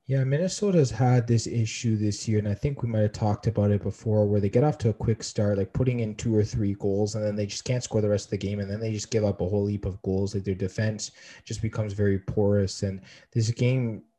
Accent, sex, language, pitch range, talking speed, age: American, male, English, 100-115 Hz, 270 wpm, 20-39